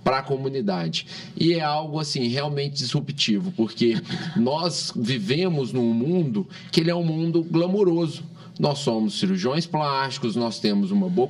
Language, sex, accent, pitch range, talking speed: Portuguese, male, Brazilian, 125-185 Hz, 150 wpm